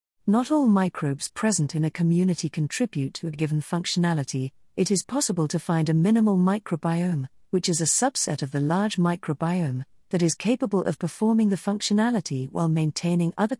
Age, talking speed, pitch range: 50-69, 170 wpm, 155-205 Hz